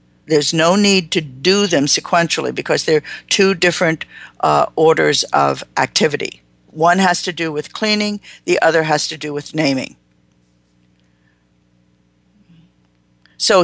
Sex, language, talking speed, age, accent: female, English, 130 wpm, 50-69, American